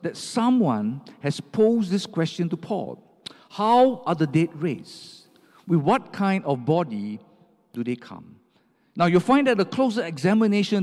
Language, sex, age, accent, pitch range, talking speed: English, male, 50-69, Malaysian, 150-215 Hz, 155 wpm